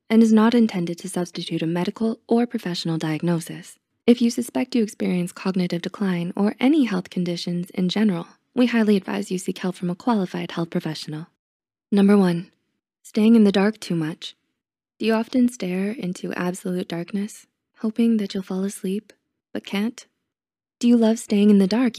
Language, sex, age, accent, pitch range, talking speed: English, female, 20-39, American, 180-225 Hz, 175 wpm